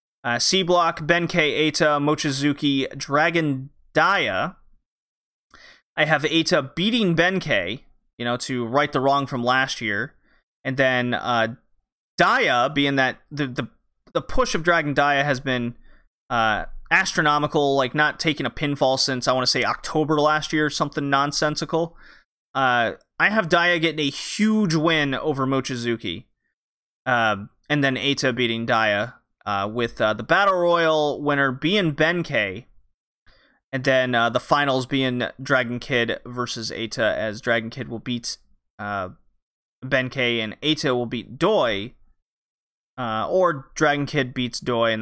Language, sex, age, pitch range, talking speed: English, male, 30-49, 120-150 Hz, 145 wpm